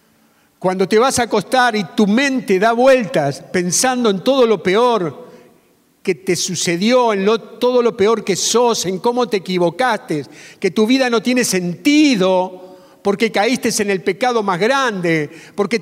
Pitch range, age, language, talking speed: 190-245 Hz, 50-69, Spanish, 160 wpm